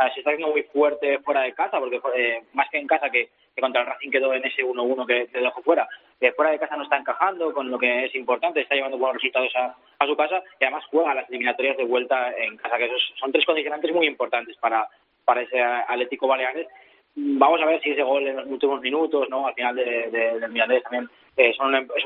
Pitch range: 130-165 Hz